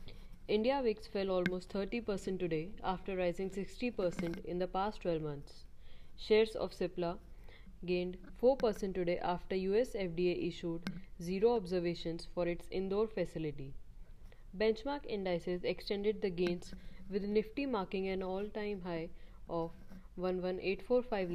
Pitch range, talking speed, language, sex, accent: 170-200 Hz, 120 wpm, English, female, Indian